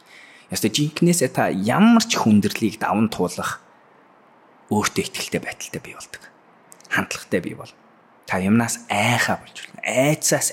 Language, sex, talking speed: English, male, 125 wpm